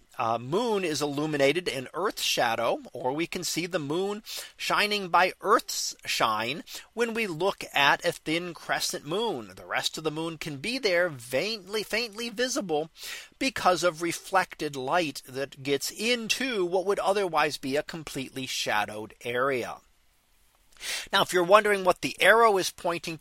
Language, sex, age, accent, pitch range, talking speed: English, male, 40-59, American, 150-200 Hz, 155 wpm